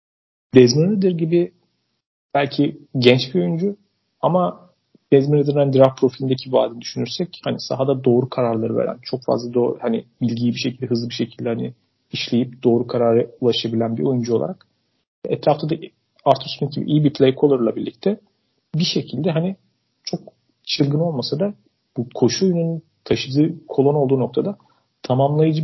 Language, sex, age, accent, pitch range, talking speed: Turkish, male, 40-59, native, 120-155 Hz, 140 wpm